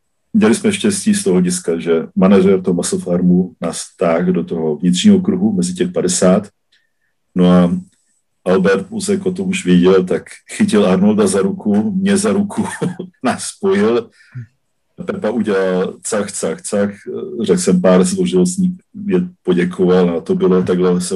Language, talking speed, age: Slovak, 145 wpm, 50-69